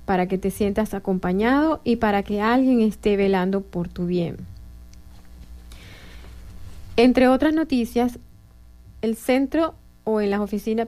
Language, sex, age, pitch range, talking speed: English, female, 30-49, 195-240 Hz, 125 wpm